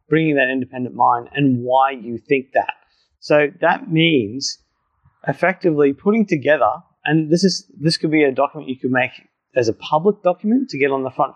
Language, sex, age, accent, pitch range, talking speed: English, male, 30-49, Australian, 135-165 Hz, 185 wpm